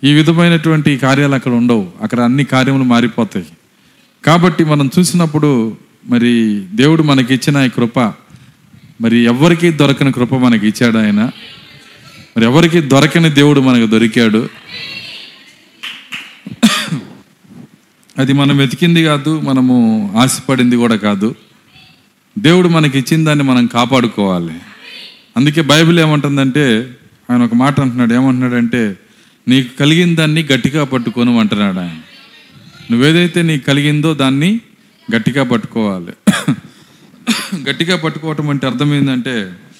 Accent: native